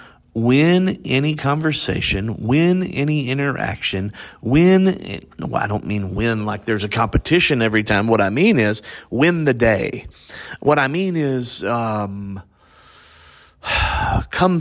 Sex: male